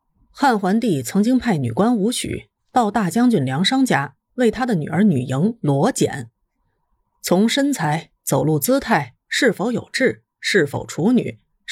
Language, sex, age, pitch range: Chinese, female, 30-49, 145-245 Hz